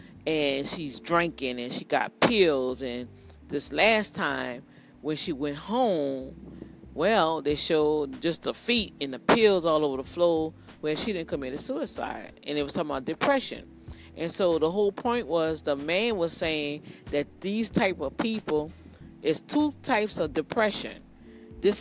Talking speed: 170 wpm